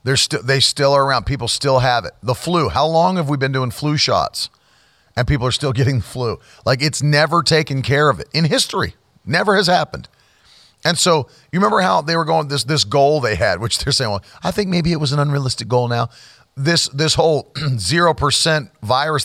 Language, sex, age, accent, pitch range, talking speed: English, male, 40-59, American, 110-155 Hz, 215 wpm